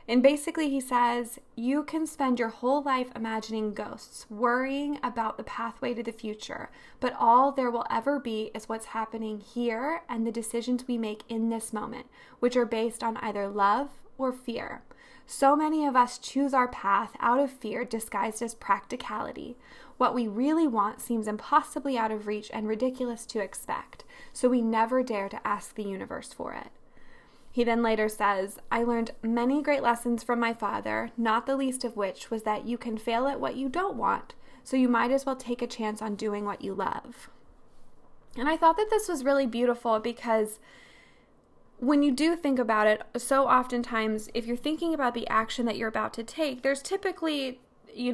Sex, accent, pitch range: female, American, 220-265 Hz